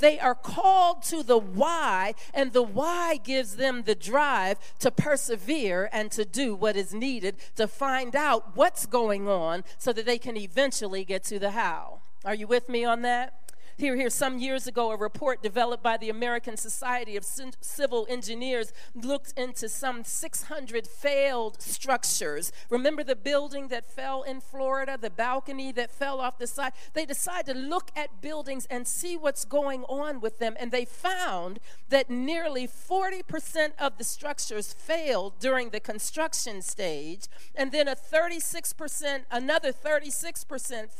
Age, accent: 40-59, American